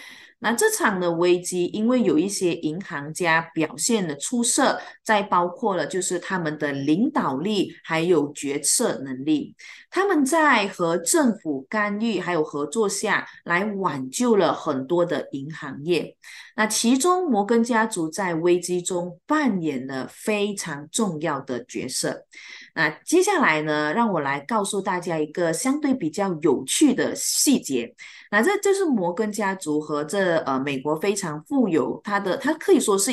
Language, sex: Chinese, female